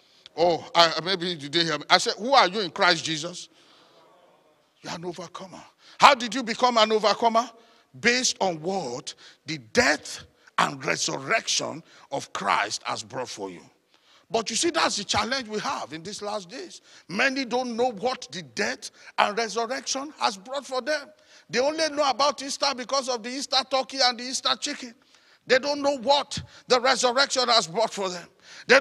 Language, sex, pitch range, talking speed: English, male, 210-260 Hz, 175 wpm